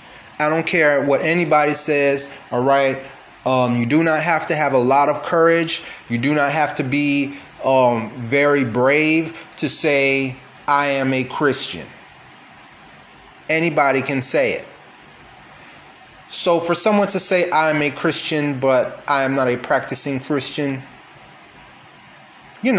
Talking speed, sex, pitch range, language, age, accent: 140 wpm, male, 130-165 Hz, English, 30-49, American